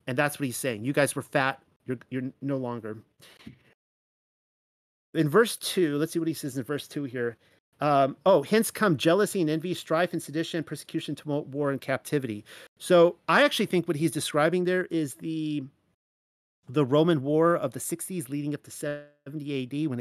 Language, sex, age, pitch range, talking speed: English, male, 40-59, 130-160 Hz, 185 wpm